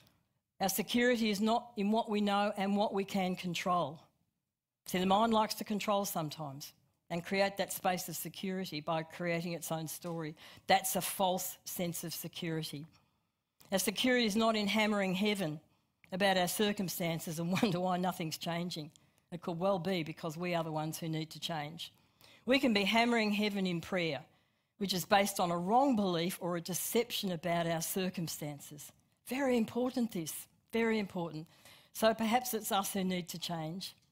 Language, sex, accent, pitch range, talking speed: English, female, Australian, 165-200 Hz, 170 wpm